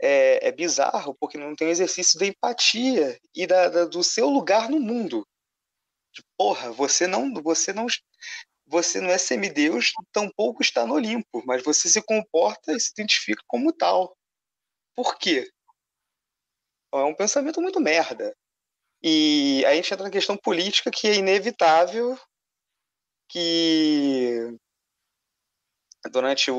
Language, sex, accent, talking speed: Portuguese, male, Brazilian, 140 wpm